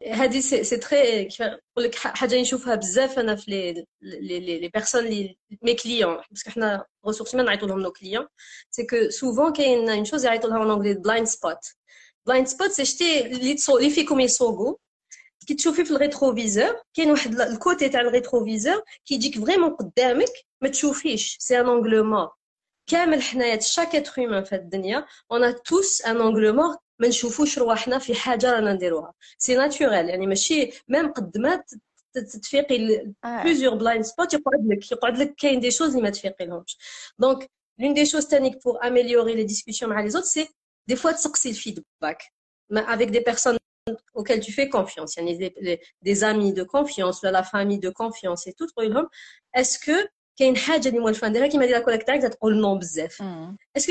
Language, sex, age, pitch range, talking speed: Arabic, female, 30-49, 215-275 Hz, 150 wpm